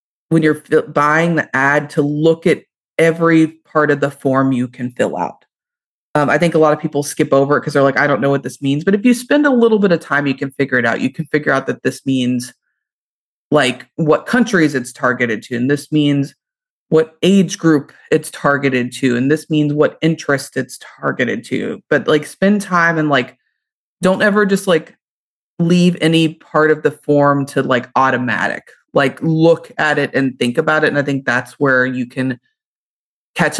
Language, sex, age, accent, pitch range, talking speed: English, female, 30-49, American, 130-160 Hz, 205 wpm